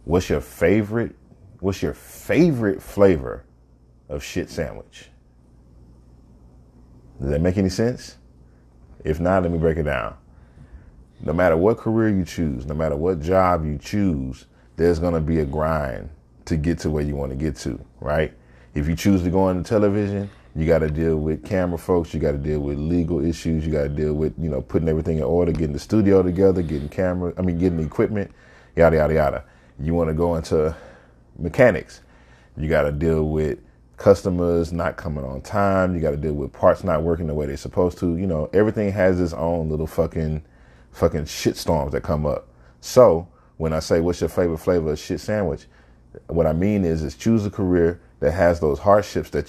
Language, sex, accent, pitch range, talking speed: English, male, American, 70-90 Hz, 195 wpm